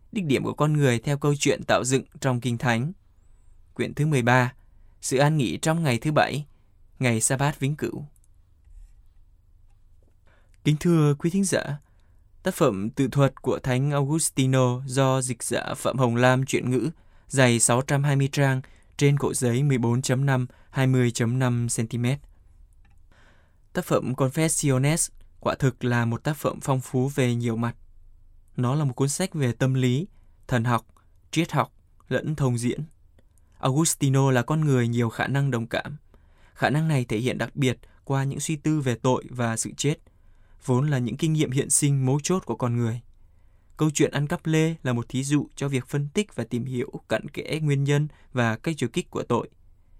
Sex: male